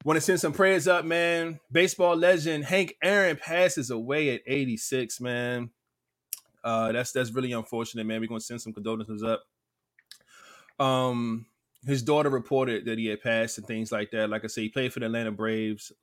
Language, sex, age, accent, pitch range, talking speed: English, male, 20-39, American, 115-155 Hz, 185 wpm